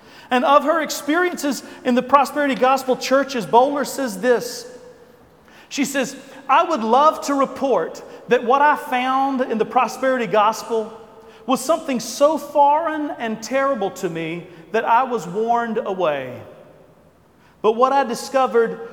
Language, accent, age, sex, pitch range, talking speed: English, American, 40-59, male, 220-270 Hz, 145 wpm